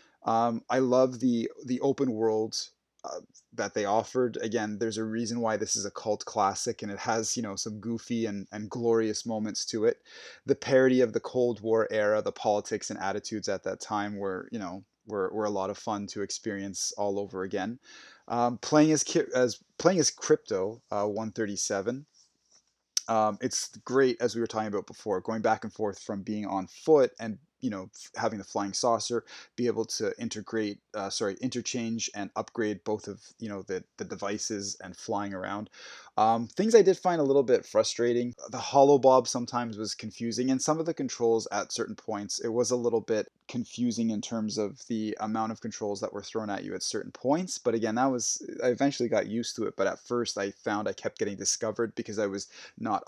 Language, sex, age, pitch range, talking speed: English, male, 20-39, 105-125 Hz, 210 wpm